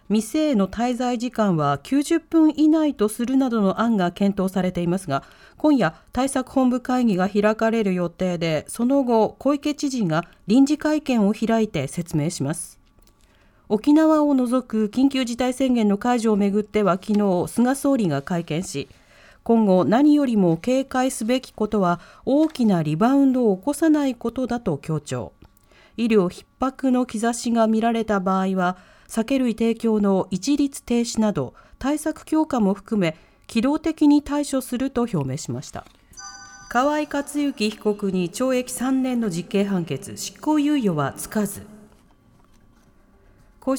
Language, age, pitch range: Japanese, 40-59, 185-260 Hz